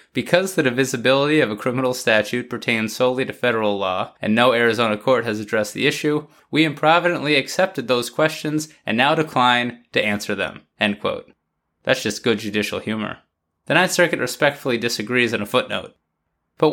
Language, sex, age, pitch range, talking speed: English, male, 20-39, 105-150 Hz, 170 wpm